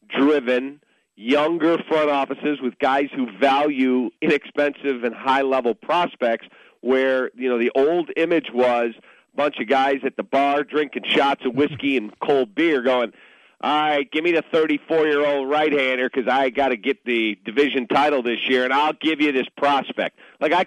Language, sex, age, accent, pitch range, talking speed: English, male, 40-59, American, 135-160 Hz, 170 wpm